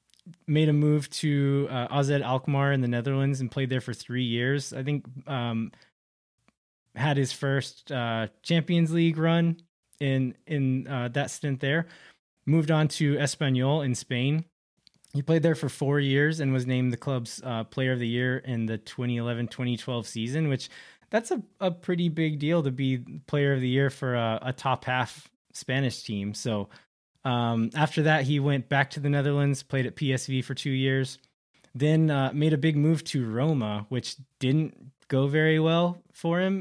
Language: English